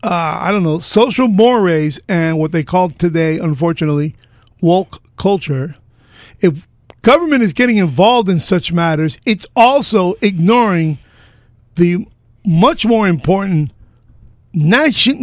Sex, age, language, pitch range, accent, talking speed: male, 50-69, English, 130-195 Hz, American, 120 wpm